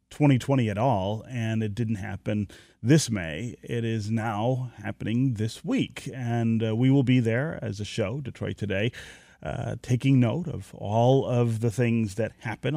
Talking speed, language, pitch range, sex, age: 170 wpm, English, 100-125 Hz, male, 30-49